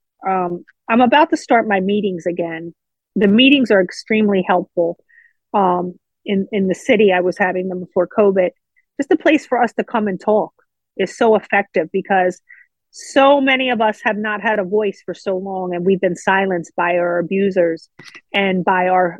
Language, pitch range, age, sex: English, 180-220 Hz, 40-59, female